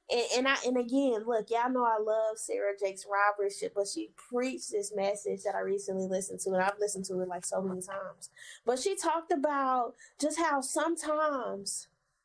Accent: American